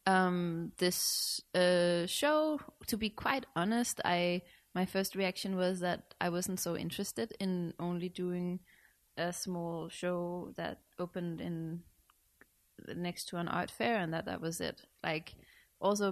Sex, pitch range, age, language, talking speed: female, 165-190 Hz, 20-39, English, 145 wpm